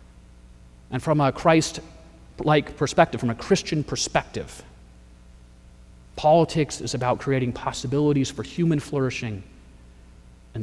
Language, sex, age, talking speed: English, male, 40-59, 100 wpm